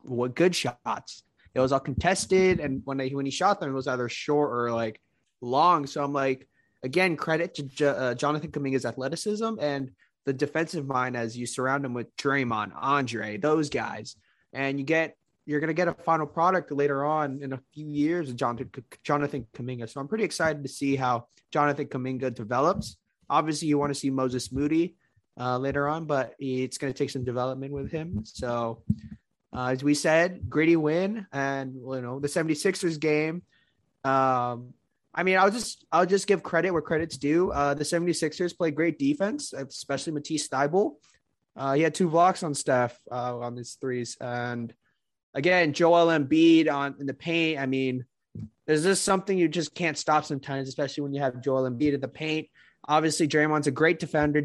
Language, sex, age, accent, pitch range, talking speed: English, male, 20-39, American, 130-160 Hz, 185 wpm